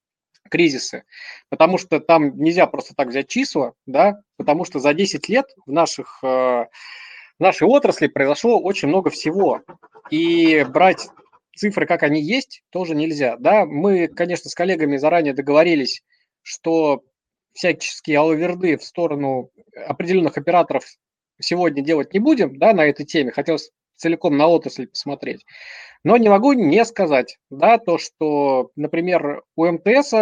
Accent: native